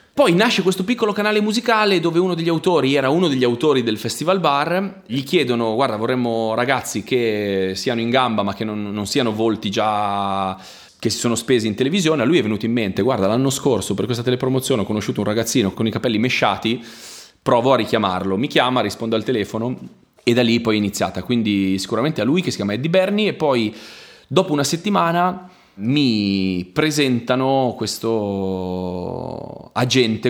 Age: 30-49